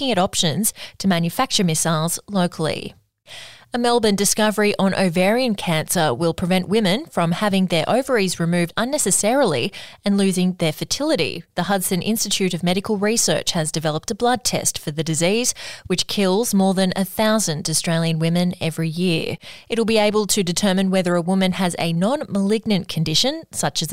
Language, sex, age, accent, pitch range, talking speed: English, female, 20-39, Australian, 170-205 Hz, 160 wpm